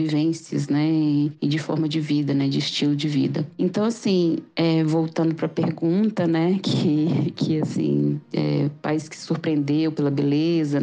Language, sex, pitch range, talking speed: Portuguese, female, 145-165 Hz, 160 wpm